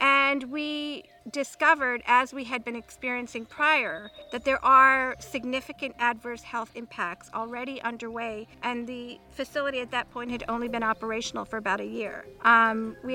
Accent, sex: American, female